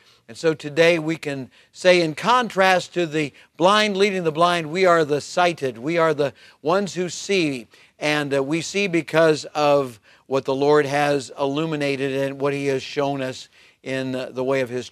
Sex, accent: male, American